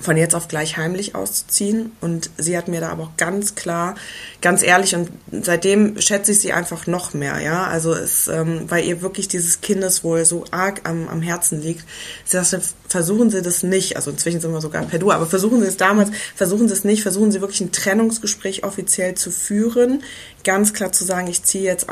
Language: German